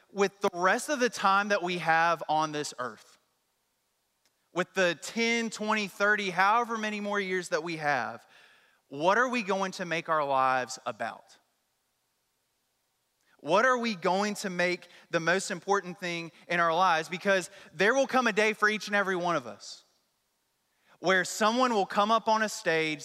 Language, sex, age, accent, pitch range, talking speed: English, male, 20-39, American, 165-210 Hz, 175 wpm